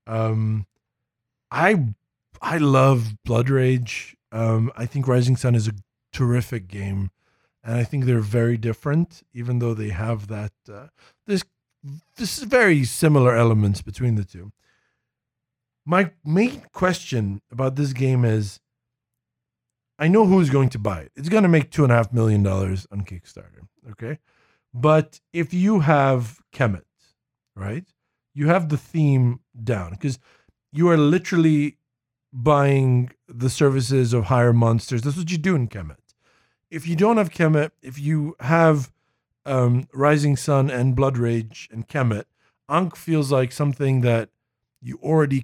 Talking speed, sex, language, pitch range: 150 wpm, male, English, 115-150 Hz